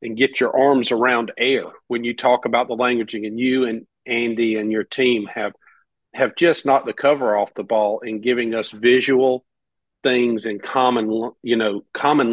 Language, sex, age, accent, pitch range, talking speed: English, male, 50-69, American, 115-145 Hz, 185 wpm